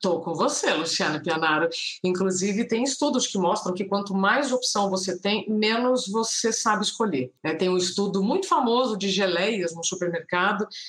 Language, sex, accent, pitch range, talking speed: Portuguese, female, Brazilian, 175-240 Hz, 165 wpm